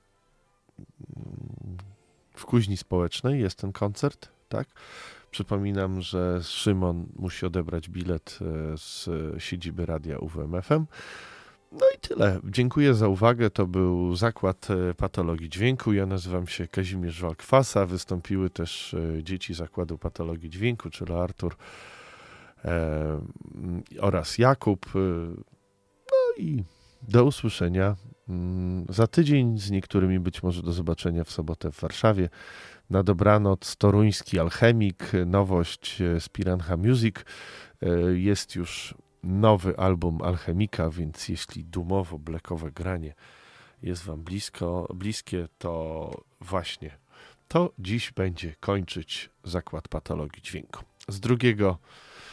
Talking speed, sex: 105 wpm, male